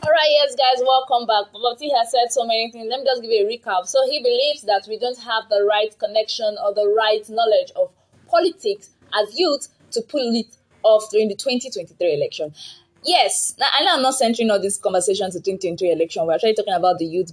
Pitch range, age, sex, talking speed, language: 200-270 Hz, 20-39, female, 220 wpm, English